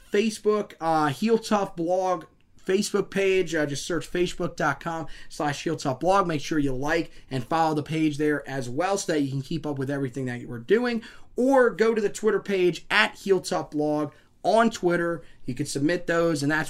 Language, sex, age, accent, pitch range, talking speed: English, male, 30-49, American, 145-180 Hz, 195 wpm